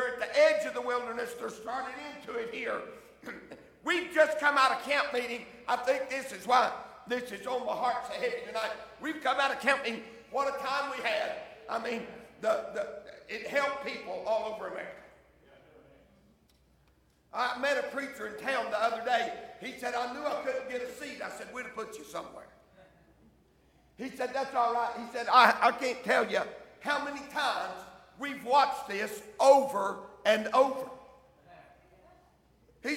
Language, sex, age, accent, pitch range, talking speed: English, male, 60-79, American, 240-305 Hz, 175 wpm